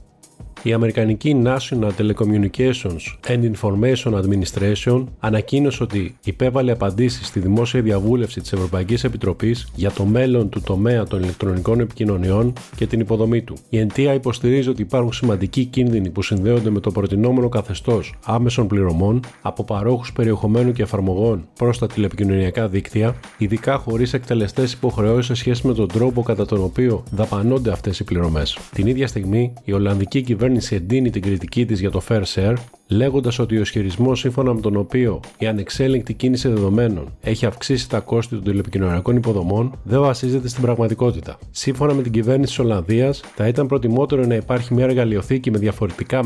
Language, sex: Greek, male